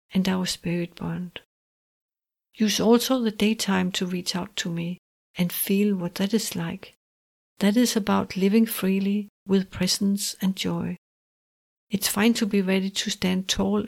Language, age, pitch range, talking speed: English, 60-79, 185-215 Hz, 155 wpm